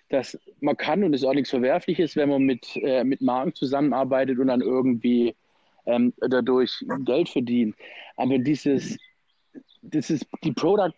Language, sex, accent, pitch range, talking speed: German, male, German, 125-145 Hz, 150 wpm